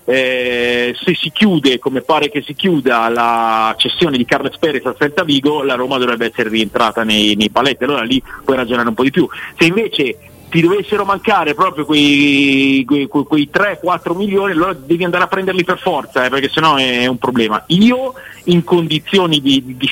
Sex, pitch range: male, 120-160 Hz